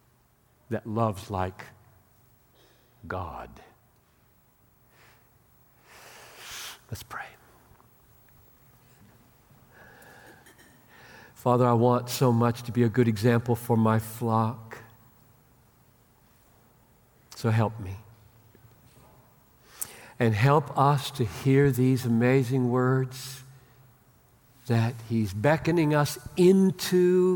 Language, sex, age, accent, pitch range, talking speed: English, male, 60-79, American, 120-140 Hz, 75 wpm